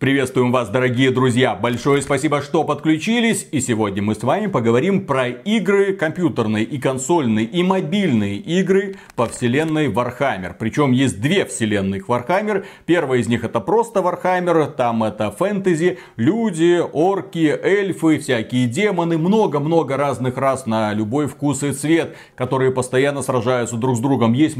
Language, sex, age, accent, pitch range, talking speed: Russian, male, 30-49, native, 125-165 Hz, 145 wpm